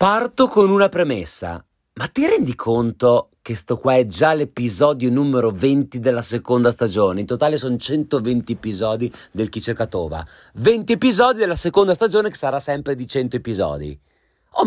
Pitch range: 115-175 Hz